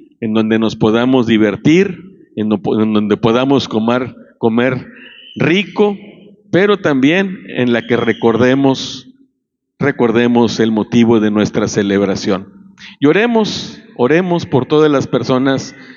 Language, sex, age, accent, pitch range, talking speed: Spanish, male, 50-69, Mexican, 115-160 Hz, 120 wpm